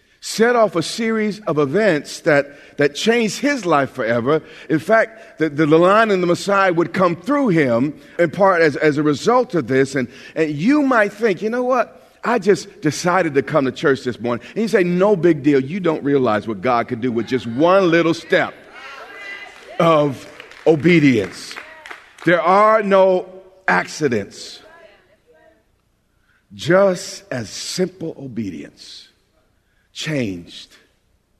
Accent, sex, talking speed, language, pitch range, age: American, male, 150 wpm, English, 110-175 Hz, 50-69